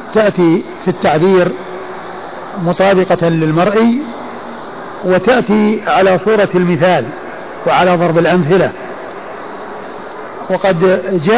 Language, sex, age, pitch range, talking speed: Arabic, male, 50-69, 175-205 Hz, 75 wpm